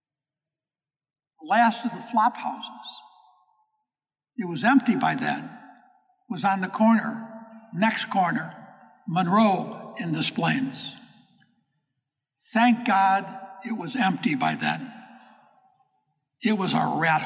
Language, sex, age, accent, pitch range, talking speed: English, male, 60-79, American, 205-250 Hz, 110 wpm